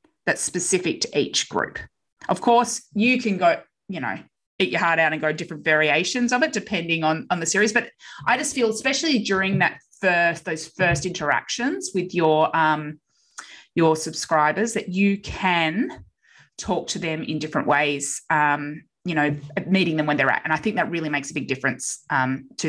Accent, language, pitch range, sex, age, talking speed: Australian, English, 150-215 Hz, female, 20-39, 190 wpm